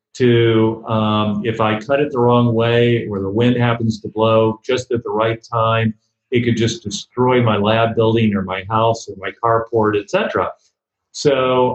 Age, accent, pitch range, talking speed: 40-59, American, 105-120 Hz, 185 wpm